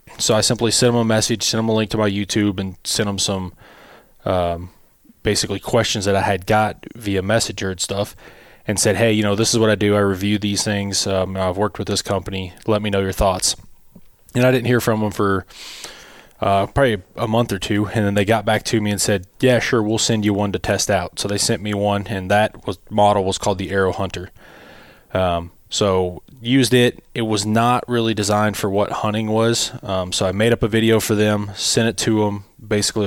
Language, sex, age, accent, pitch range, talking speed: English, male, 20-39, American, 100-110 Hz, 230 wpm